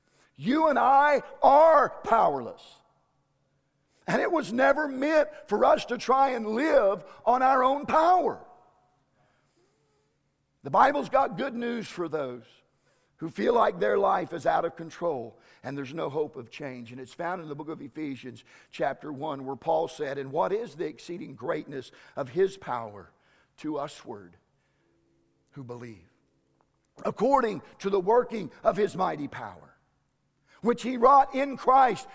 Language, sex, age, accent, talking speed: English, male, 50-69, American, 150 wpm